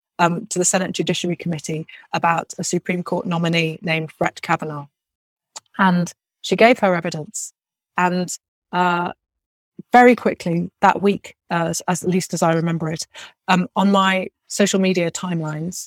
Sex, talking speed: female, 150 wpm